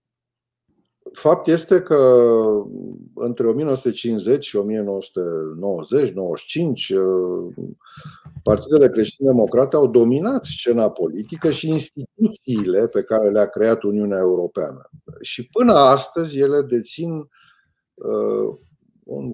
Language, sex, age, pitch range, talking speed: Romanian, male, 50-69, 105-160 Hz, 85 wpm